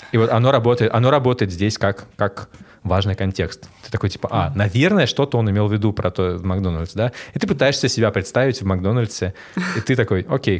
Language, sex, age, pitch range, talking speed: Russian, male, 20-39, 90-115 Hz, 210 wpm